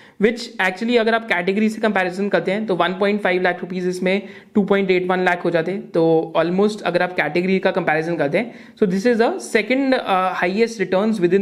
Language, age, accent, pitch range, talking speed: Hindi, 30-49, native, 185-235 Hz, 140 wpm